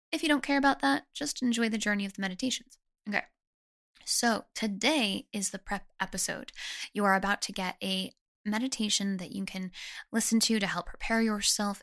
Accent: American